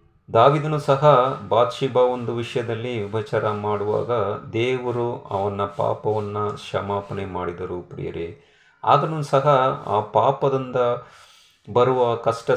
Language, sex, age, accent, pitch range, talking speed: Kannada, male, 30-49, native, 105-135 Hz, 90 wpm